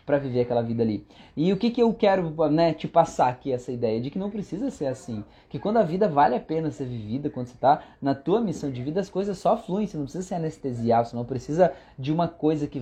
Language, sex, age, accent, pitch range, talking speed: Portuguese, male, 20-39, Brazilian, 140-210 Hz, 260 wpm